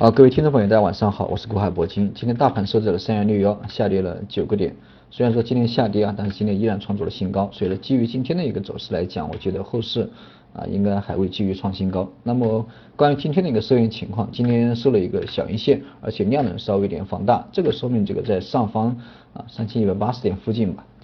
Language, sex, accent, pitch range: Chinese, male, native, 100-120 Hz